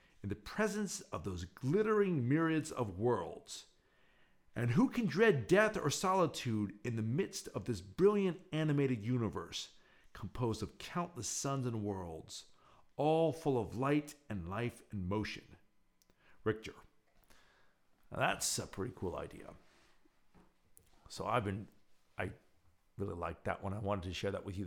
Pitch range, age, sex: 110-180 Hz, 50-69, male